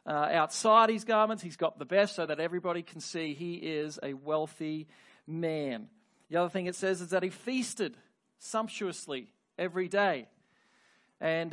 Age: 40-59